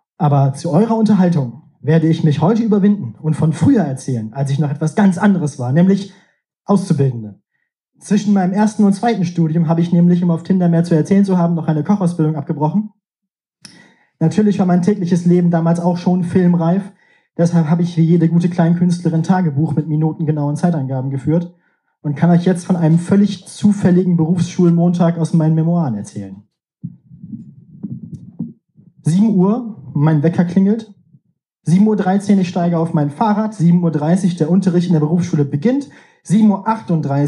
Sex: male